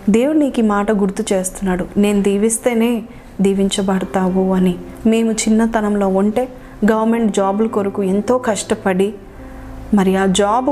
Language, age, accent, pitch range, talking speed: Telugu, 30-49, native, 195-245 Hz, 120 wpm